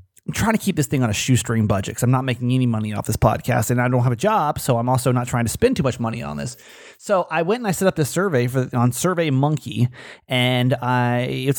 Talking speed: 270 wpm